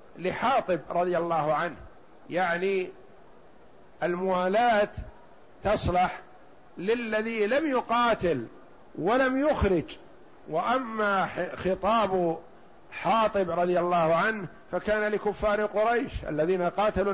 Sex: male